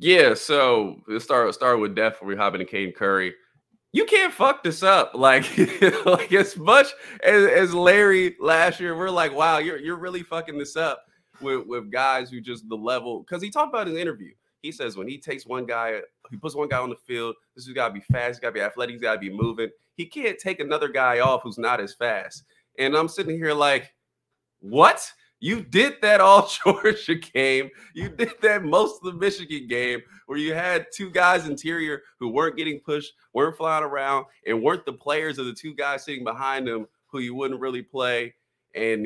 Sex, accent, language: male, American, English